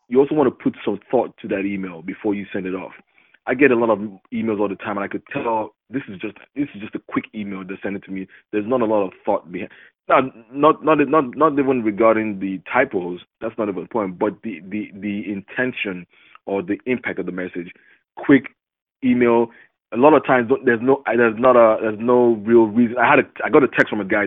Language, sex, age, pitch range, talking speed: English, male, 20-39, 100-130 Hz, 250 wpm